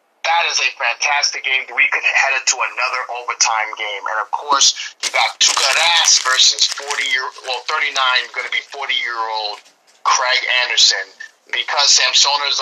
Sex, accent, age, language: male, American, 30-49, English